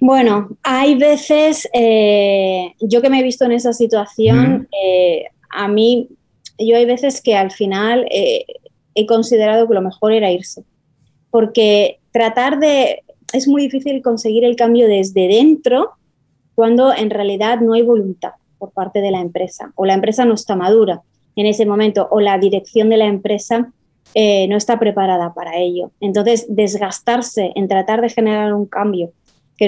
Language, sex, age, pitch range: Spanish, female, 20-39, 195-235 Hz